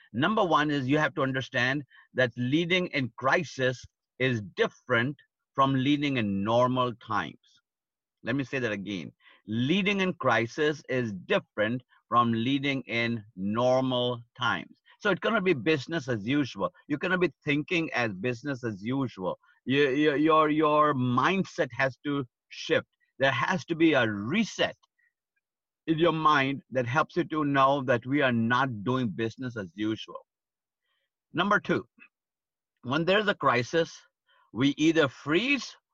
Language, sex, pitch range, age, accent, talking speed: English, male, 120-150 Hz, 50-69, Indian, 145 wpm